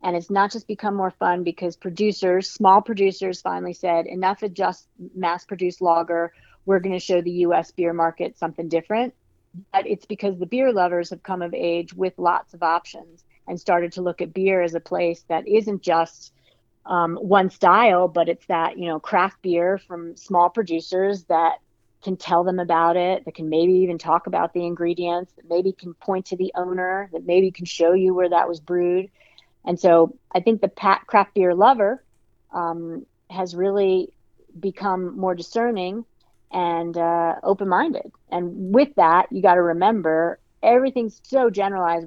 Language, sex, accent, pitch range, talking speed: English, female, American, 170-195 Hz, 180 wpm